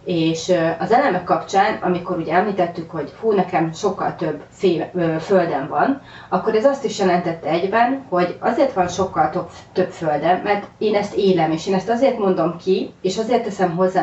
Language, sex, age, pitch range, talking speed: Hungarian, female, 30-49, 170-210 Hz, 185 wpm